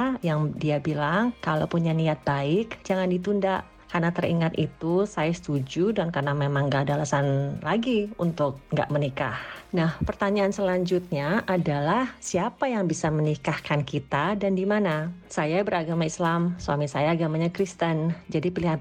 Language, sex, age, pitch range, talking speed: Indonesian, female, 30-49, 145-180 Hz, 145 wpm